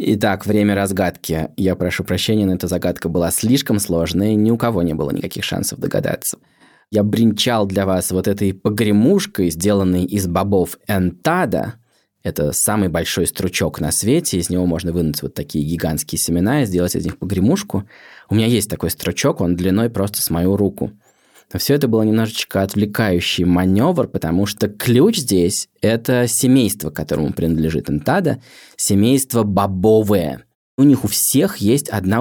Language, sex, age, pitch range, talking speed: Russian, male, 20-39, 90-110 Hz, 160 wpm